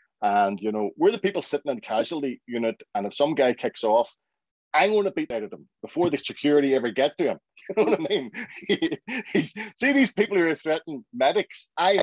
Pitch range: 120-165 Hz